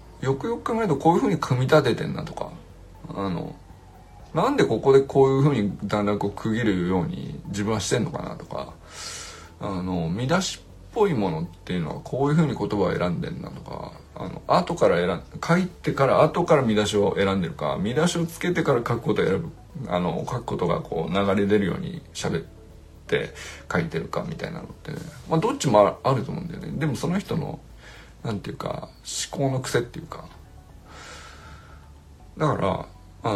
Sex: male